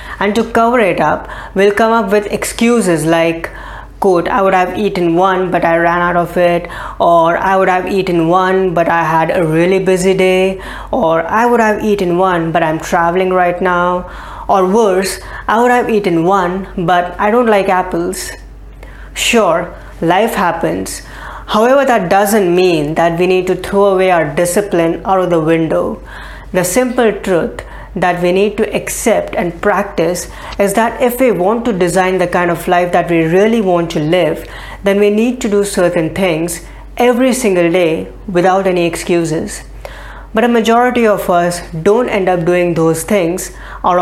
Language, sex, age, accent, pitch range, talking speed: English, female, 20-39, Indian, 175-205 Hz, 175 wpm